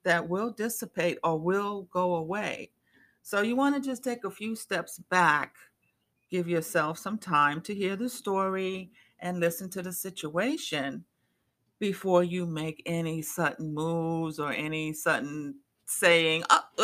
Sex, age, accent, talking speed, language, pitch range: female, 50-69, American, 145 wpm, English, 155-205 Hz